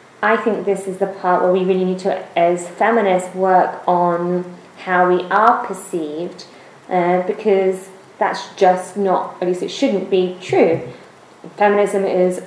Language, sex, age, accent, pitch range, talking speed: English, female, 20-39, British, 185-205 Hz, 155 wpm